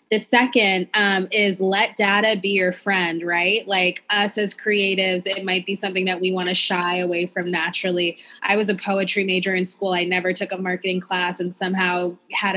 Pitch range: 180-205 Hz